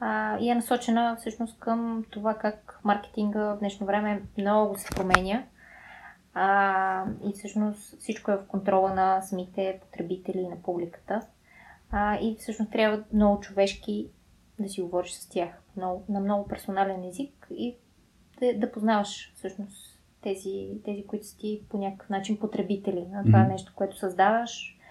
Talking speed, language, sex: 145 wpm, Bulgarian, female